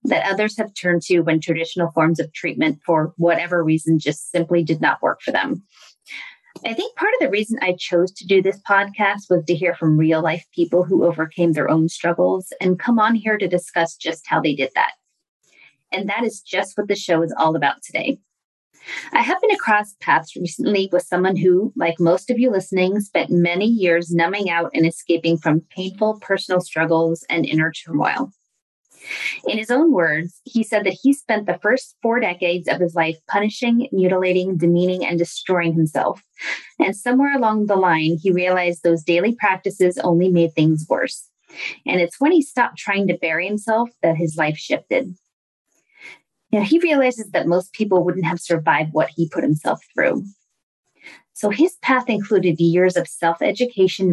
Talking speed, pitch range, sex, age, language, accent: 180 wpm, 165-210 Hz, female, 30-49, English, American